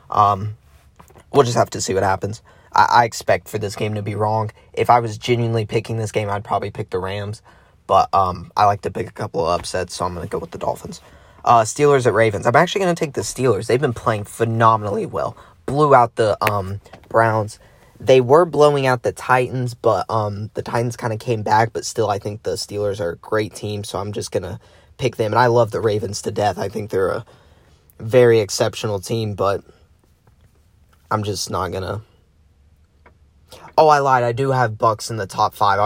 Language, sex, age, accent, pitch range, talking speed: English, male, 10-29, American, 95-115 Hz, 215 wpm